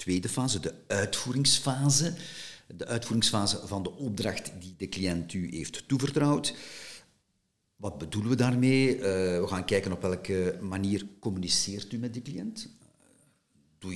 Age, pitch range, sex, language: 50-69, 95-120 Hz, male, Dutch